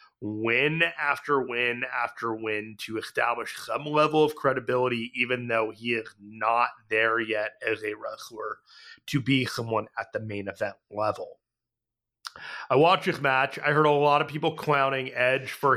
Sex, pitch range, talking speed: male, 120-150 Hz, 160 wpm